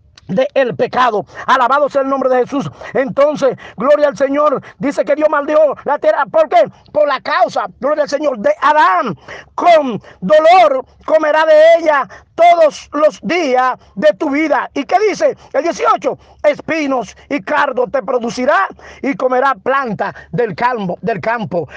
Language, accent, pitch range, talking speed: Spanish, American, 270-325 Hz, 155 wpm